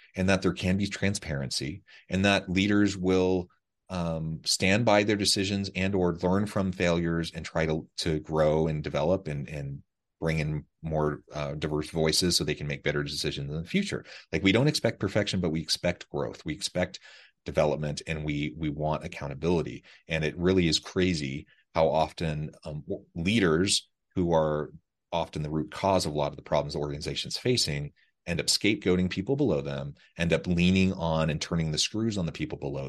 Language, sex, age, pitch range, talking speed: English, male, 30-49, 75-95 Hz, 190 wpm